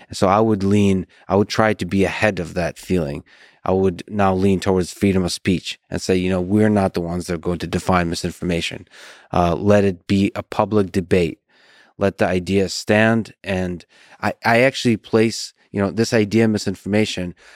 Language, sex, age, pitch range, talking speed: English, male, 30-49, 90-105 Hz, 195 wpm